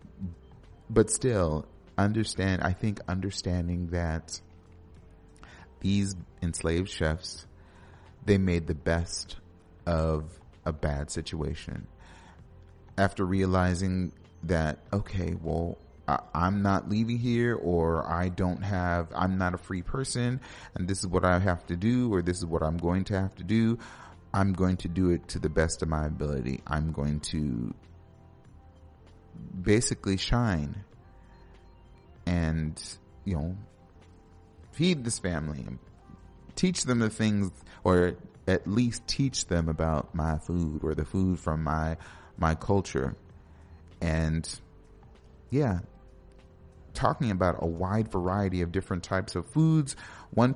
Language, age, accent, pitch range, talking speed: English, 30-49, American, 85-100 Hz, 130 wpm